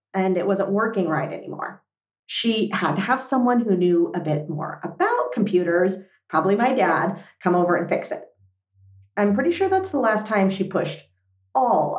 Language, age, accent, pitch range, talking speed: English, 40-59, American, 180-260 Hz, 180 wpm